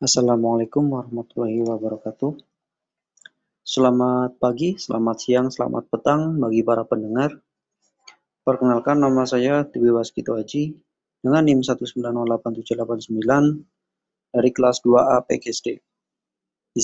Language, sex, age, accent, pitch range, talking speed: Indonesian, male, 20-39, native, 120-140 Hz, 90 wpm